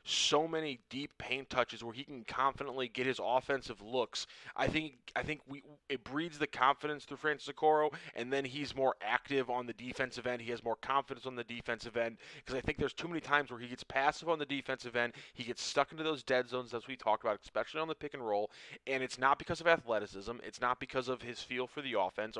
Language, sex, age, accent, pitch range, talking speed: English, male, 20-39, American, 120-140 Hz, 240 wpm